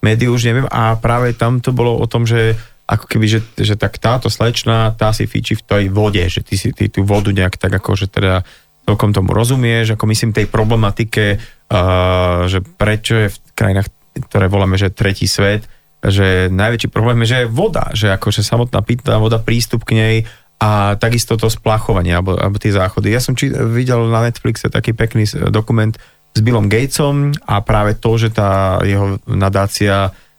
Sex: male